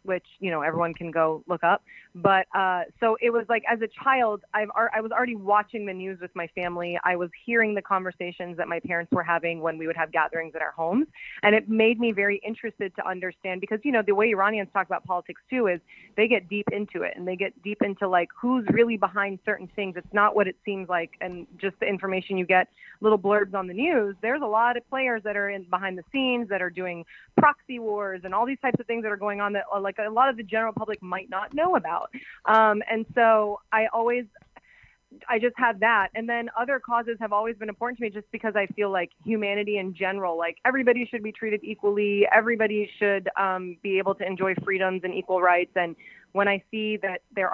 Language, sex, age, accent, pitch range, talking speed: English, female, 30-49, American, 190-230 Hz, 235 wpm